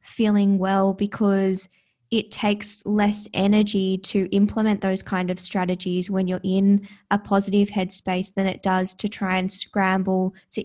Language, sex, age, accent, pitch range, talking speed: English, female, 20-39, Australian, 185-205 Hz, 150 wpm